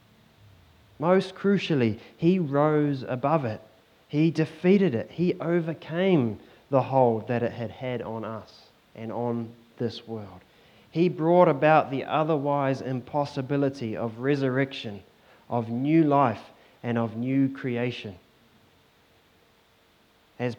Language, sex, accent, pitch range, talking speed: English, male, Australian, 115-155 Hz, 115 wpm